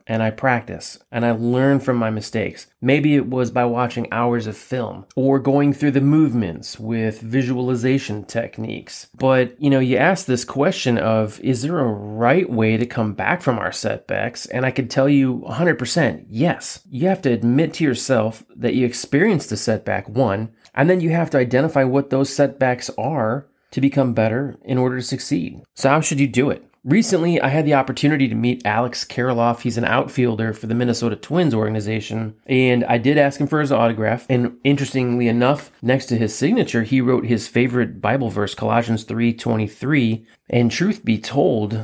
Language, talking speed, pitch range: English, 185 wpm, 115-135 Hz